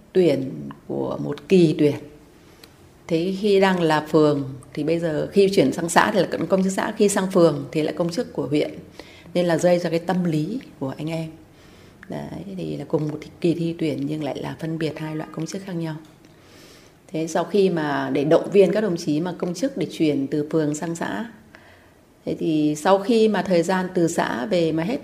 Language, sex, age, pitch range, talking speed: Vietnamese, female, 30-49, 150-180 Hz, 220 wpm